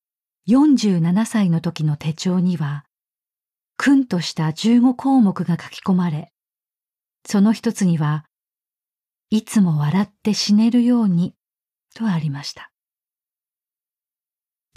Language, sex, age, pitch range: Japanese, female, 40-59, 170-220 Hz